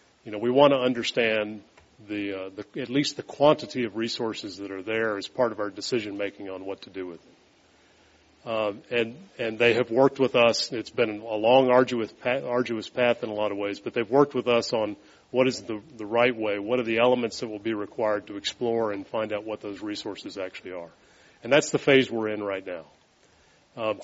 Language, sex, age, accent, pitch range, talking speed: English, male, 40-59, American, 105-125 Hz, 225 wpm